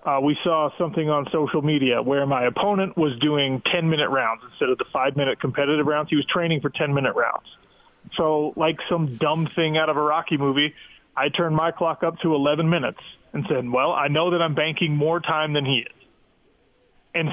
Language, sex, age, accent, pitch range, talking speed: English, male, 30-49, American, 145-180 Hz, 200 wpm